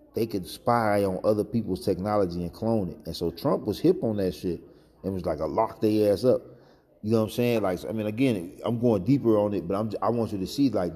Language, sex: English, male